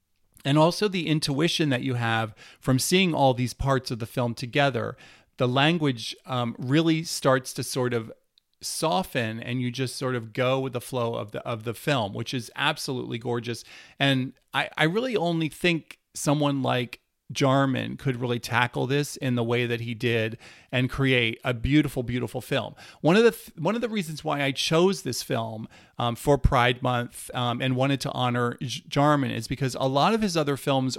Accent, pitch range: American, 125-150 Hz